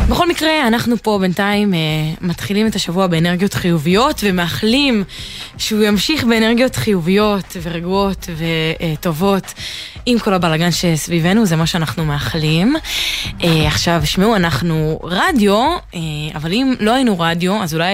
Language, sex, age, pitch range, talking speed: Hebrew, female, 20-39, 170-225 Hz, 135 wpm